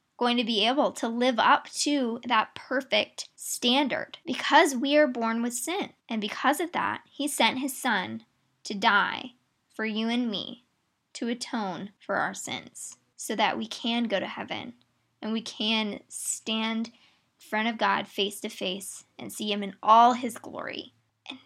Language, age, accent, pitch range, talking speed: English, 10-29, American, 220-290 Hz, 175 wpm